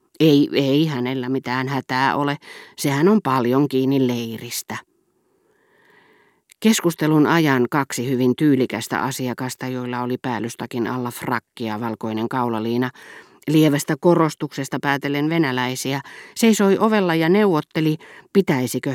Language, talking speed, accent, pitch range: Finnish, 105 wpm, native, 125-155 Hz